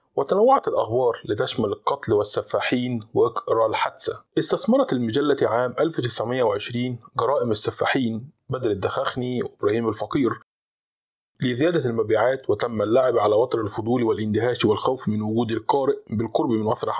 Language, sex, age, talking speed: Arabic, male, 20-39, 115 wpm